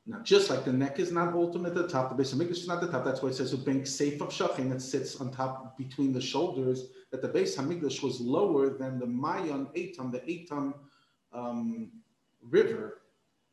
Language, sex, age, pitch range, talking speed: English, male, 40-59, 130-175 Hz, 215 wpm